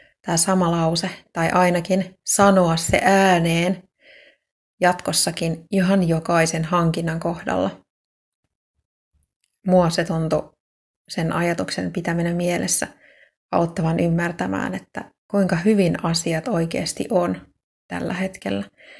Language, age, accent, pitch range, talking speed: Finnish, 30-49, native, 165-190 Hz, 90 wpm